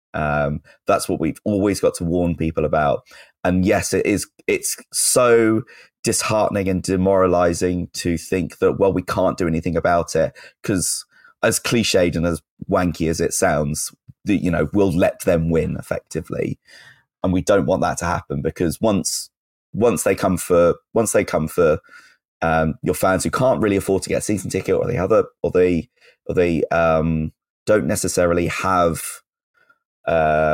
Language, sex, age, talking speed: English, male, 20-39, 170 wpm